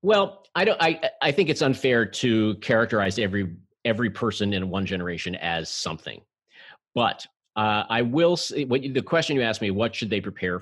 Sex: male